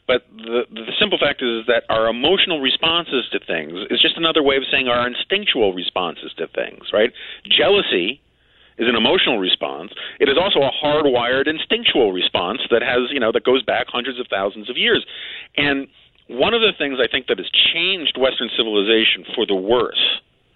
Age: 40-59